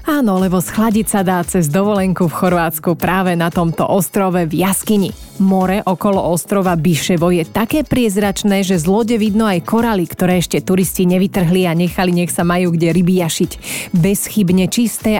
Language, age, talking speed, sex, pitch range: Slovak, 30-49, 165 wpm, female, 180-210 Hz